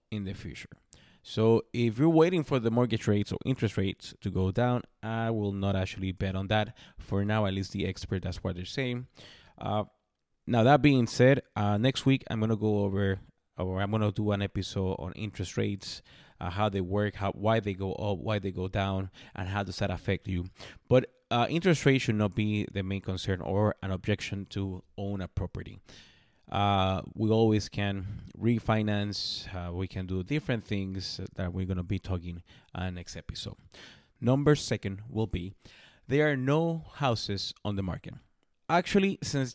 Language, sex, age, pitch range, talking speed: English, male, 20-39, 95-120 Hz, 190 wpm